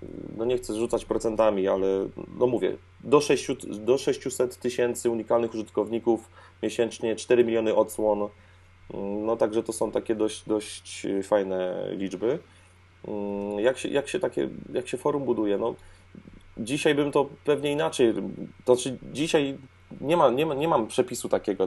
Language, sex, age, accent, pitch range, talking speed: Polish, male, 30-49, native, 95-125 Hz, 150 wpm